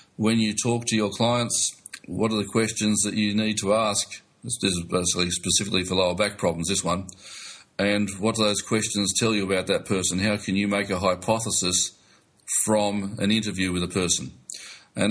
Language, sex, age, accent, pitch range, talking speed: English, male, 40-59, Australian, 95-105 Hz, 190 wpm